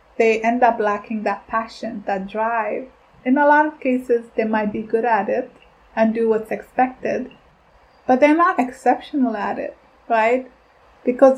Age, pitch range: 20-39, 220-255 Hz